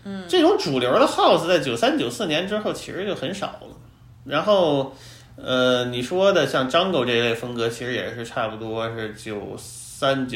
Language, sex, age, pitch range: Chinese, male, 30-49, 115-165 Hz